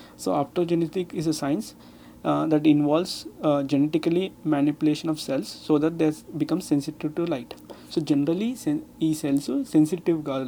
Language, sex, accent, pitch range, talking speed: Telugu, male, native, 140-165 Hz, 160 wpm